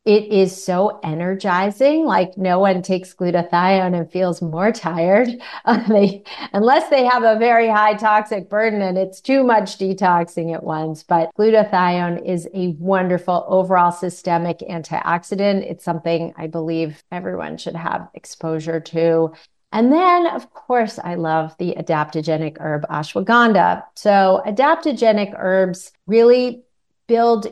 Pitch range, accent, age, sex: 175-210 Hz, American, 40-59, female